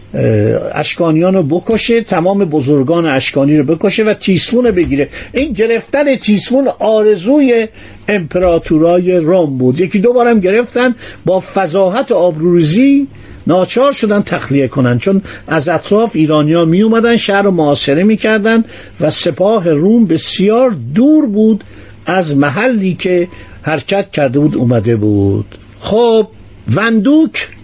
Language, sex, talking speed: Persian, male, 115 wpm